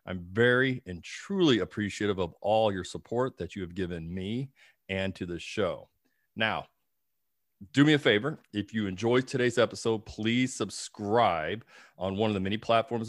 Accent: American